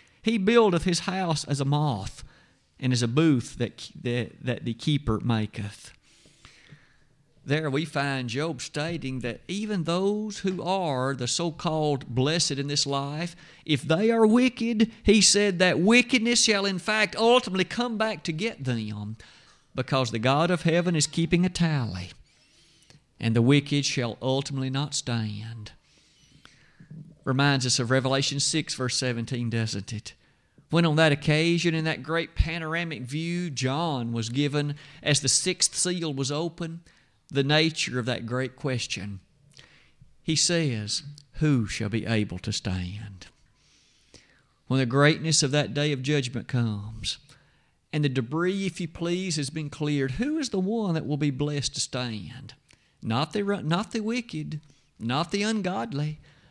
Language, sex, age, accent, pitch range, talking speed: English, male, 50-69, American, 125-170 Hz, 155 wpm